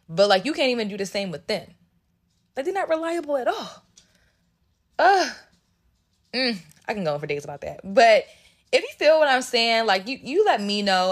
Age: 20-39